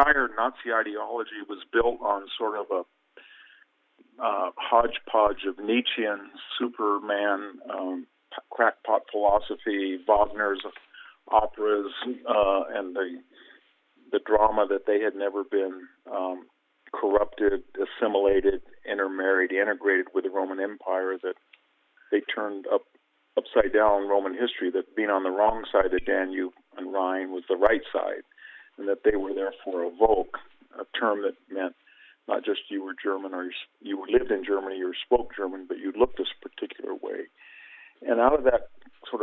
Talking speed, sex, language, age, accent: 150 wpm, male, English, 50-69, American